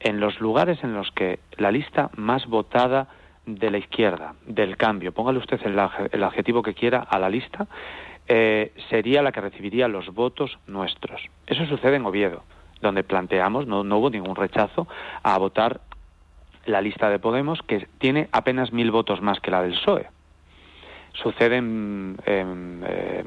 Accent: Spanish